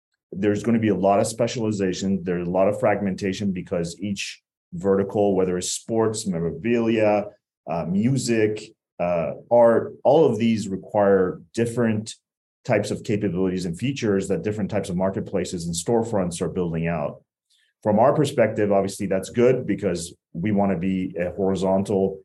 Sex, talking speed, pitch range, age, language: male, 155 wpm, 95-115 Hz, 30-49, English